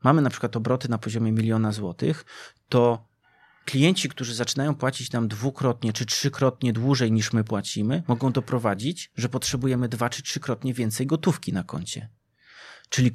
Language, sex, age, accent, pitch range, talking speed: Polish, male, 30-49, native, 110-135 Hz, 150 wpm